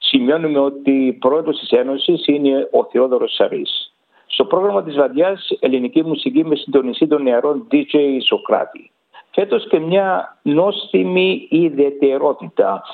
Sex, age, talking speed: male, 60-79, 125 wpm